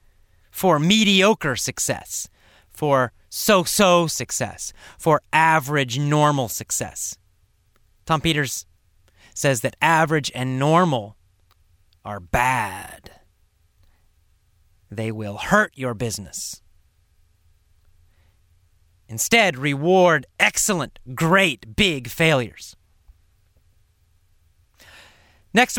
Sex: male